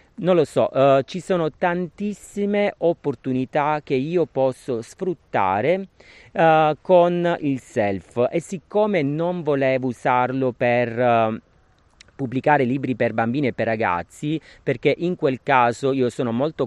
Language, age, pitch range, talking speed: Italian, 40-59, 115-145 Hz, 120 wpm